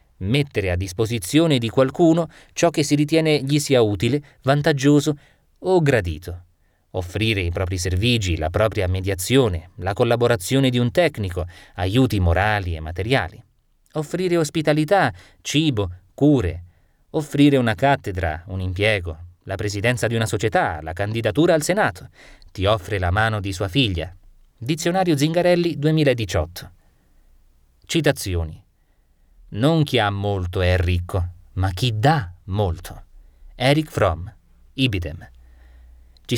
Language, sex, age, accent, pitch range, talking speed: Italian, male, 30-49, native, 90-140 Hz, 120 wpm